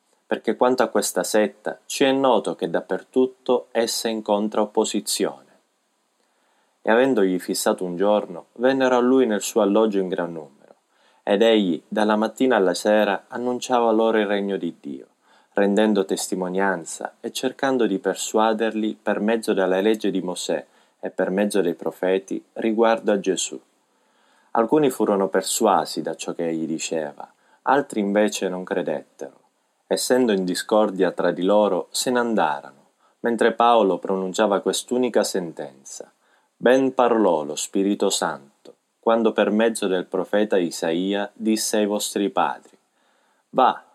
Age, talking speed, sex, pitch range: 30-49, 140 wpm, male, 95-115 Hz